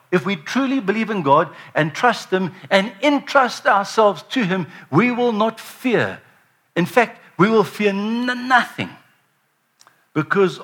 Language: English